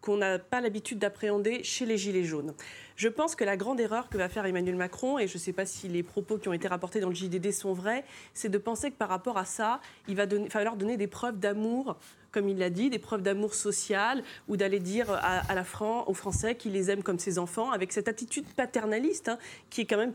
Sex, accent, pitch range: female, French, 190-230 Hz